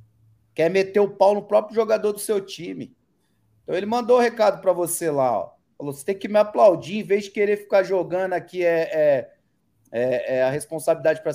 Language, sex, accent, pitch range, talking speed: Portuguese, male, Brazilian, 155-200 Hz, 210 wpm